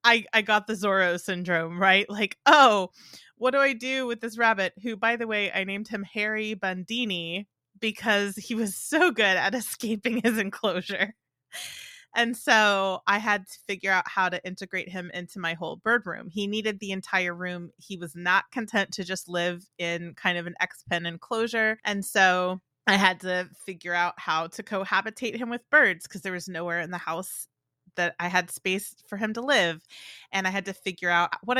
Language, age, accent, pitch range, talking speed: English, 30-49, American, 180-215 Hz, 195 wpm